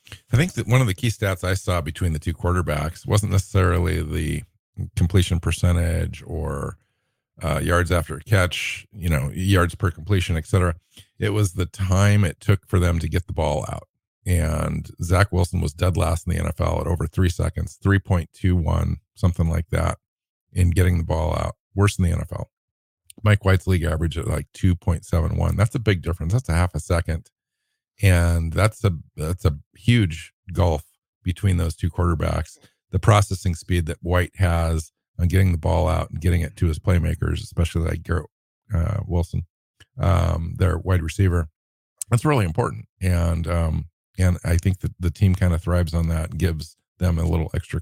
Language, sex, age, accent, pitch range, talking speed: English, male, 50-69, American, 85-100 Hz, 185 wpm